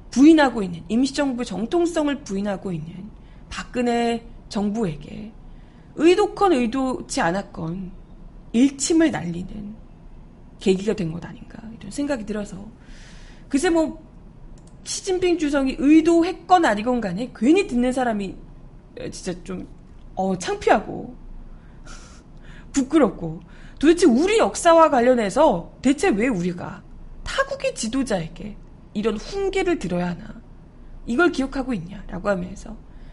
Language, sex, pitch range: Korean, female, 195-295 Hz